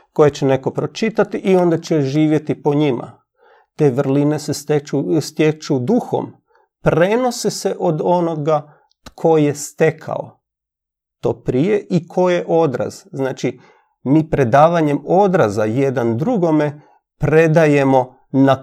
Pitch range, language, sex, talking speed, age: 125-160 Hz, Croatian, male, 115 wpm, 40-59